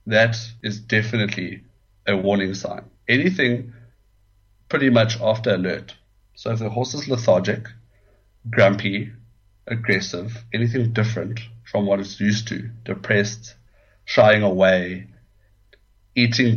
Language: English